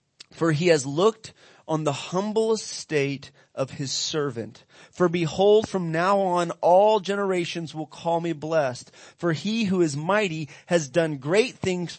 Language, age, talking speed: English, 30-49, 155 wpm